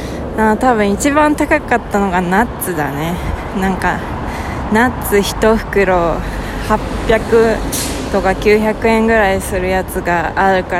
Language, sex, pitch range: Japanese, female, 185-225 Hz